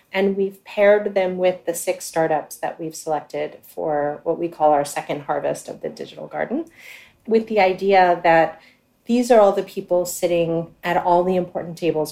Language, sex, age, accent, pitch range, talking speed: English, female, 30-49, American, 165-195 Hz, 185 wpm